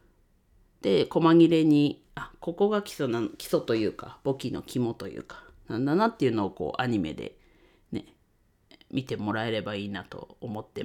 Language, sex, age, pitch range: Japanese, female, 40-59, 120-165 Hz